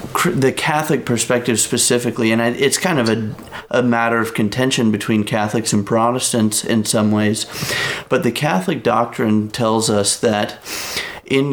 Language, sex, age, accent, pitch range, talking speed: English, male, 30-49, American, 110-125 Hz, 145 wpm